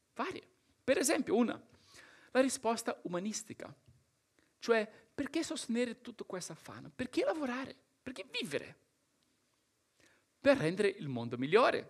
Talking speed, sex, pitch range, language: 110 wpm, male, 190-250 Hz, Italian